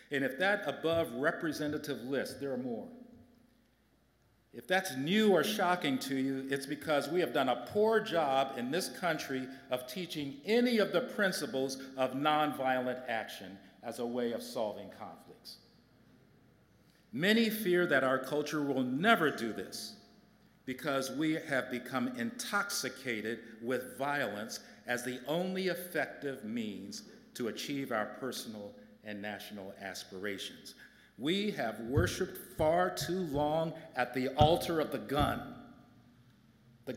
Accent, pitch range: American, 130-180 Hz